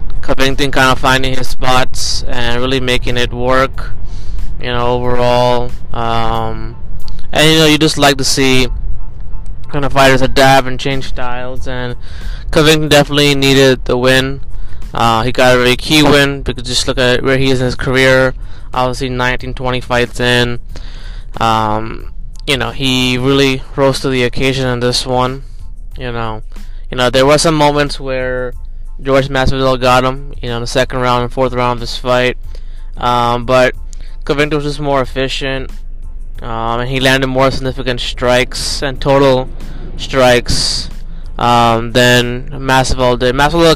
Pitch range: 120-135 Hz